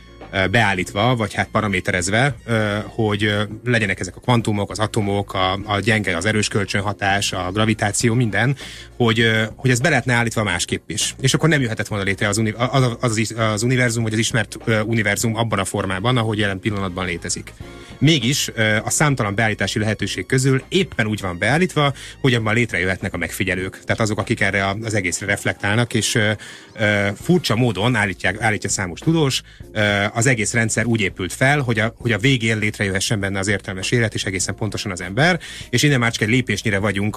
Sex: male